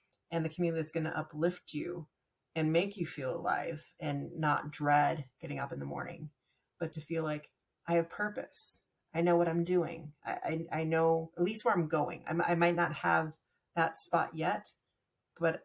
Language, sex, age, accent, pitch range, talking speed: English, female, 30-49, American, 150-170 Hz, 195 wpm